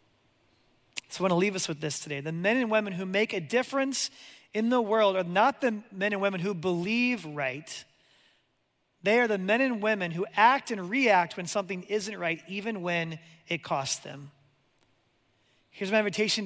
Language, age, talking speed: English, 30-49, 185 wpm